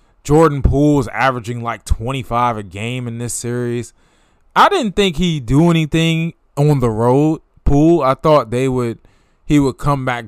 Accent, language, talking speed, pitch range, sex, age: American, English, 170 wpm, 115-160 Hz, male, 20-39